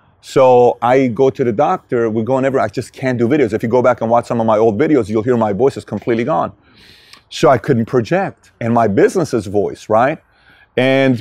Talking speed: 225 wpm